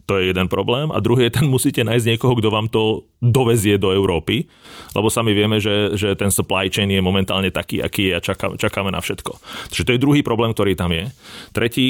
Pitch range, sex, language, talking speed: 100-120 Hz, male, Slovak, 220 wpm